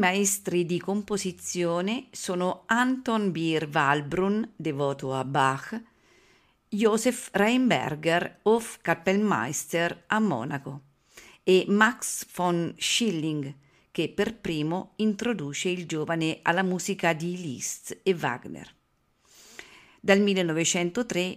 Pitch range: 165-210 Hz